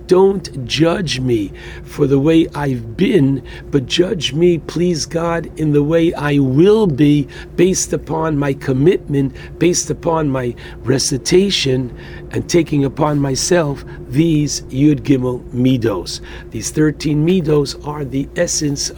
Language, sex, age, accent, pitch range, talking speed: English, male, 60-79, American, 130-160 Hz, 130 wpm